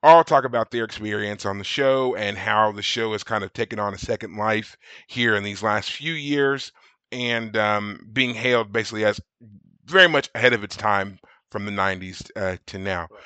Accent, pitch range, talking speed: American, 105-130 Hz, 200 wpm